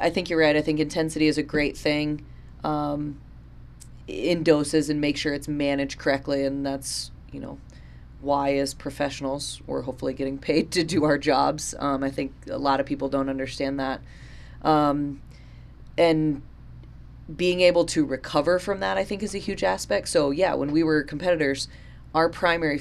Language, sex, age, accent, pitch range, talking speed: English, female, 20-39, American, 135-155 Hz, 175 wpm